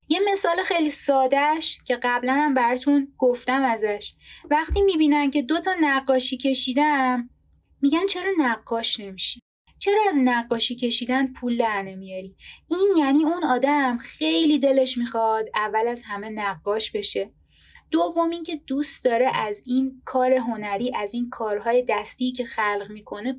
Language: Persian